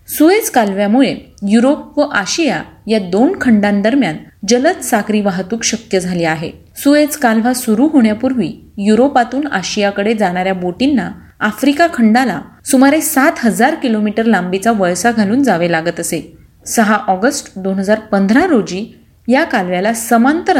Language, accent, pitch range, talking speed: Marathi, native, 200-265 Hz, 115 wpm